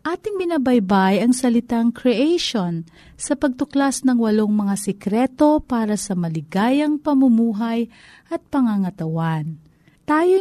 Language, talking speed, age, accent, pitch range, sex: Filipino, 105 wpm, 40-59, native, 185-255 Hz, female